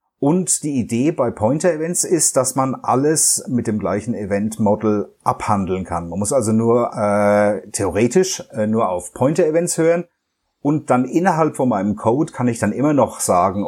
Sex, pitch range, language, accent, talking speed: male, 105-140 Hz, German, German, 165 wpm